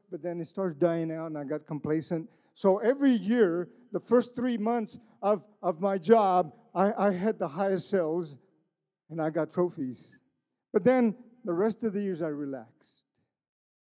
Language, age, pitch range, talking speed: English, 40-59, 165-225 Hz, 170 wpm